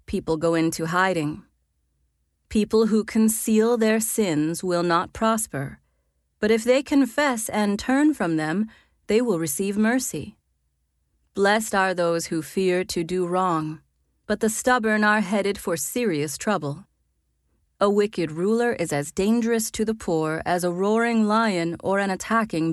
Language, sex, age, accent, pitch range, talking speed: English, female, 30-49, American, 160-220 Hz, 150 wpm